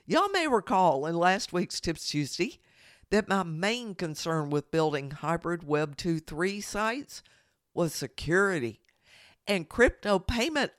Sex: female